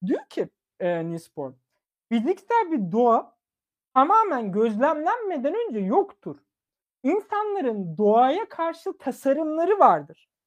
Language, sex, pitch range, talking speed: Turkish, male, 200-310 Hz, 90 wpm